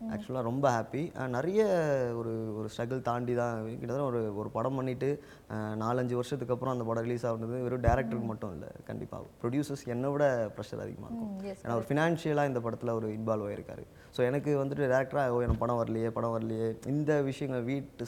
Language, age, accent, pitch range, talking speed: Tamil, 20-39, native, 110-135 Hz, 175 wpm